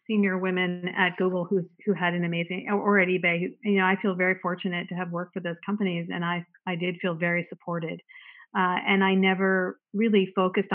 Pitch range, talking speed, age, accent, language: 180-205 Hz, 220 wpm, 40-59, American, English